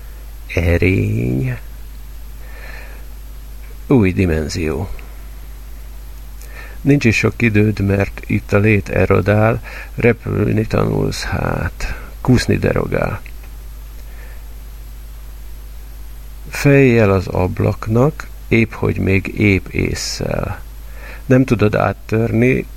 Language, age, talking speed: Hungarian, 50-69, 75 wpm